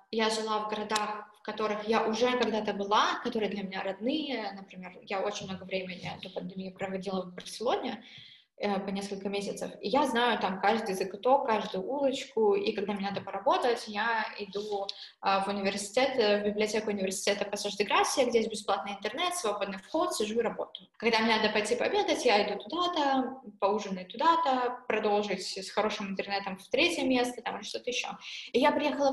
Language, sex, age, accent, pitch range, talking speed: Russian, female, 20-39, native, 200-255 Hz, 165 wpm